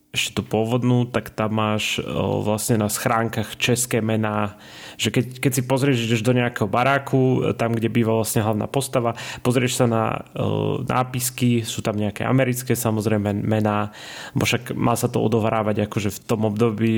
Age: 20-39